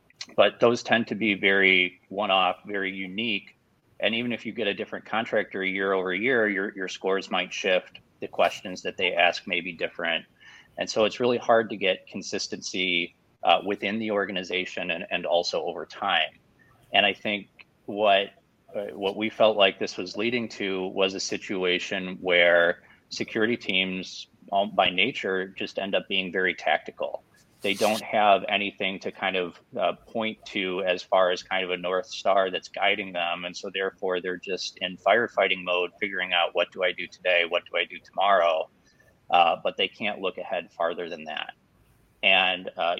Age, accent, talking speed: 30-49, American, 185 wpm